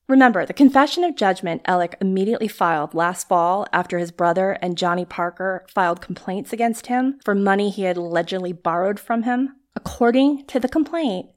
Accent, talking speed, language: American, 170 wpm, English